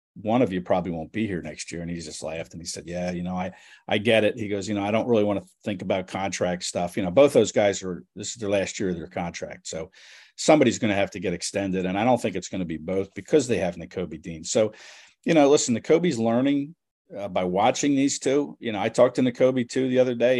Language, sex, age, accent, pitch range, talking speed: English, male, 50-69, American, 95-120 Hz, 275 wpm